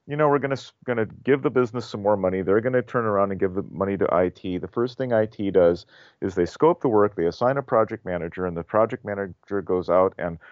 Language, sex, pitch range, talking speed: English, male, 90-115 Hz, 250 wpm